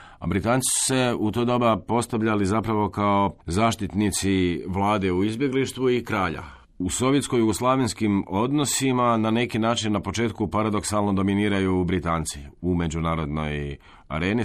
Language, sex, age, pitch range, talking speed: Croatian, male, 40-59, 85-110 Hz, 125 wpm